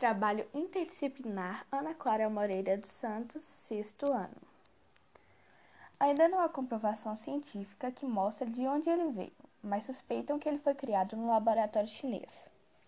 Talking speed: 135 wpm